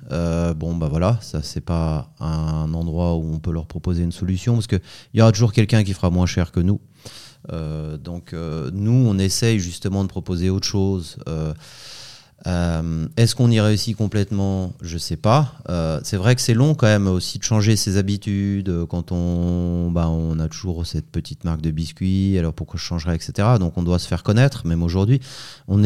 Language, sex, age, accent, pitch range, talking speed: French, male, 30-49, French, 85-105 Hz, 205 wpm